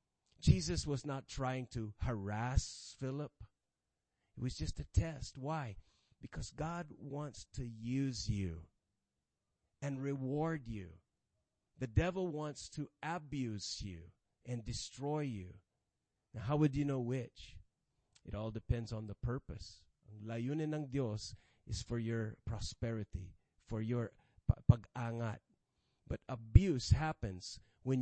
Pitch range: 105-140 Hz